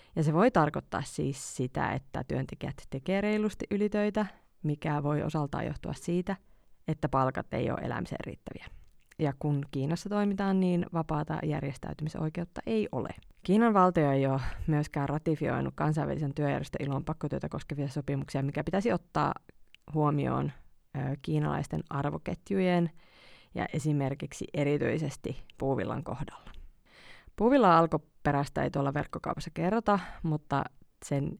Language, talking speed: Finnish, 115 wpm